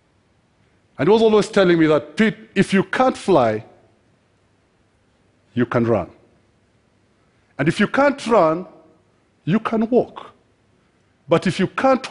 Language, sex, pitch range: Chinese, male, 120-180 Hz